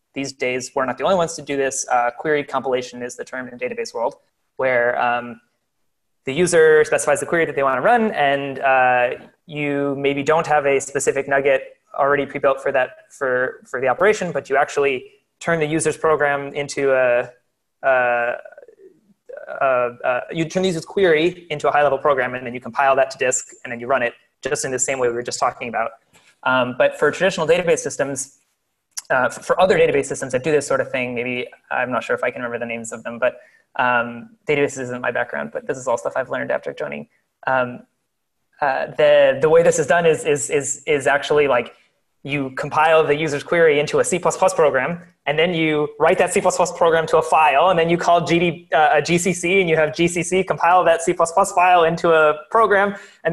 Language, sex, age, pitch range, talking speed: English, male, 20-39, 135-195 Hz, 210 wpm